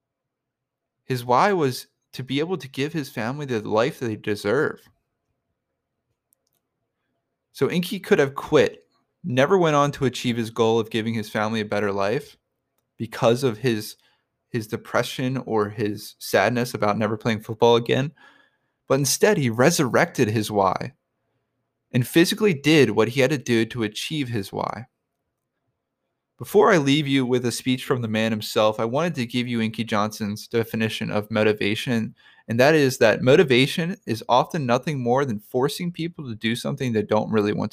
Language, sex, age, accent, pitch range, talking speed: English, male, 20-39, American, 115-145 Hz, 165 wpm